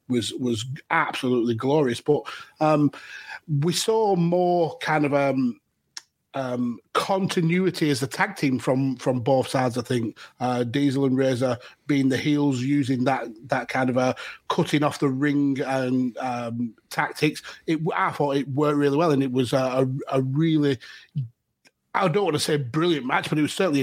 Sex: male